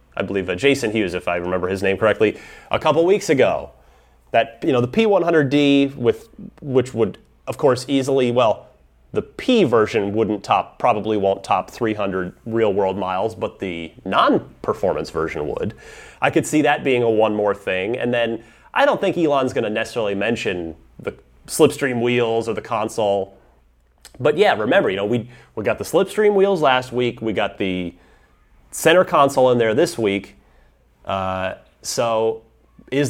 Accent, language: American, English